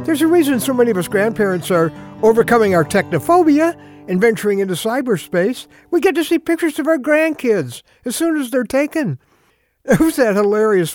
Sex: male